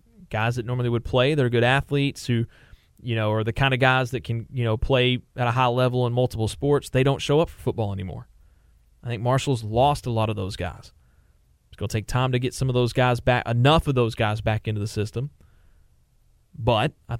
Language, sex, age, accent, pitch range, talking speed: English, male, 30-49, American, 110-135 Hz, 225 wpm